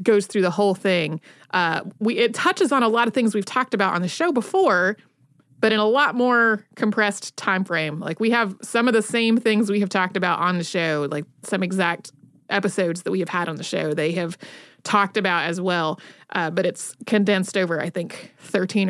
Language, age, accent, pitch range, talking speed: English, 30-49, American, 180-225 Hz, 220 wpm